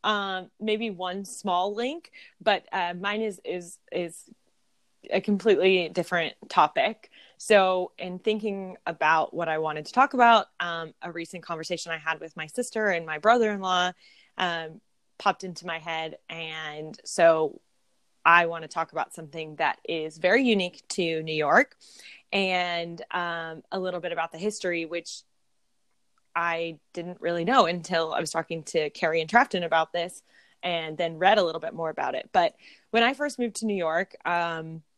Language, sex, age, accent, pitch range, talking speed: English, female, 20-39, American, 165-200 Hz, 170 wpm